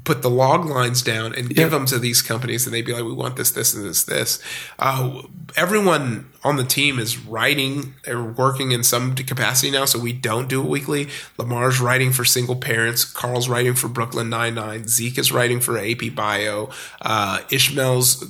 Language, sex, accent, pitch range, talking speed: English, male, American, 120-135 Hz, 195 wpm